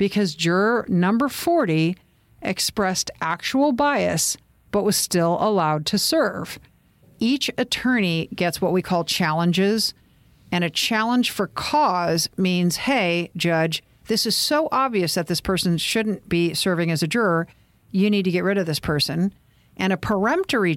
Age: 50-69